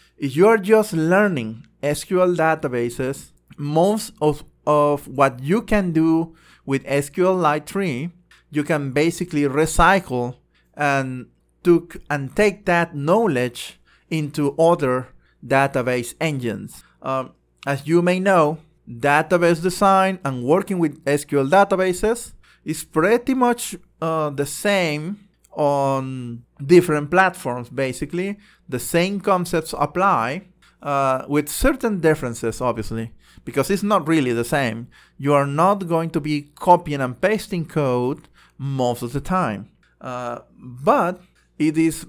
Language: English